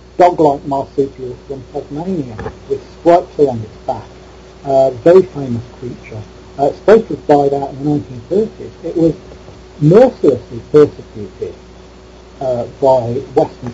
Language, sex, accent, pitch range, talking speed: English, male, British, 135-165 Hz, 140 wpm